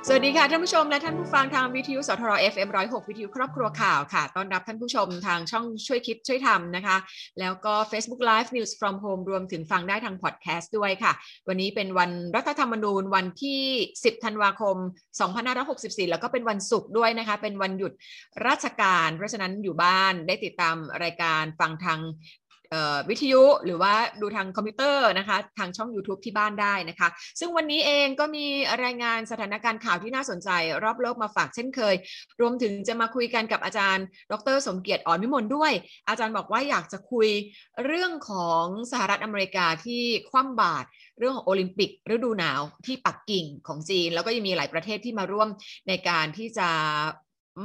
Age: 20-39